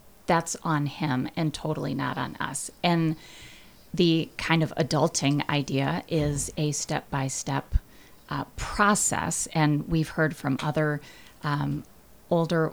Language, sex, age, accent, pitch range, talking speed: English, female, 30-49, American, 140-160 Hz, 120 wpm